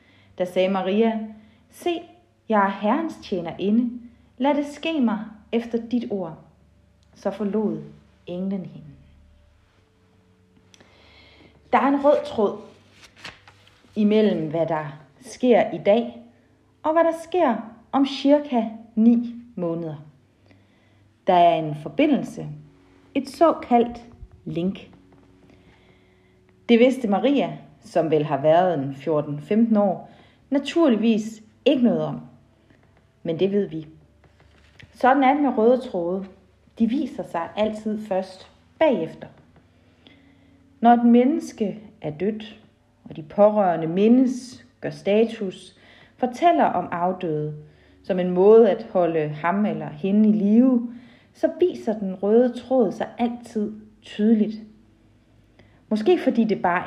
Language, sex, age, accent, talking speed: Danish, female, 40-59, native, 120 wpm